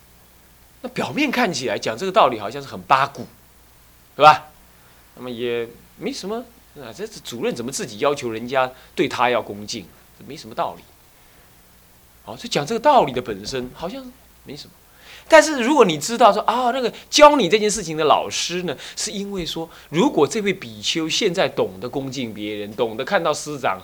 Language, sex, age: Chinese, male, 20-39